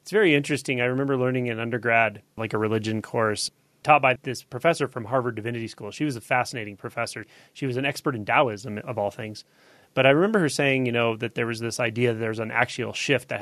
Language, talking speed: English, 235 wpm